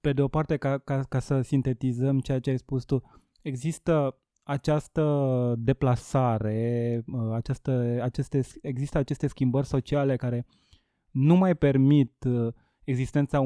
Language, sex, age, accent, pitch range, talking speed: Romanian, male, 20-39, native, 125-145 Hz, 115 wpm